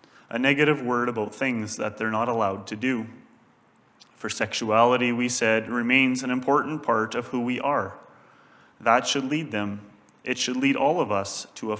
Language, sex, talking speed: English, male, 180 wpm